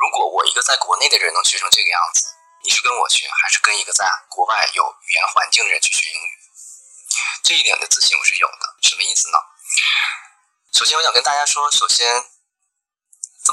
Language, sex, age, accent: Chinese, male, 20-39, native